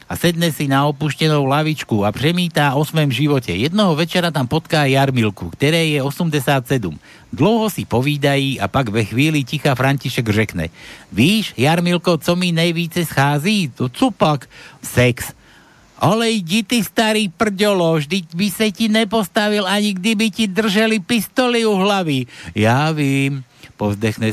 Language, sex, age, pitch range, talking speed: Slovak, male, 60-79, 125-195 Hz, 145 wpm